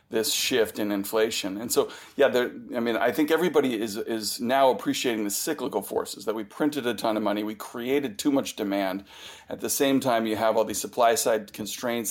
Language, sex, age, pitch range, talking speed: English, male, 40-59, 110-135 Hz, 215 wpm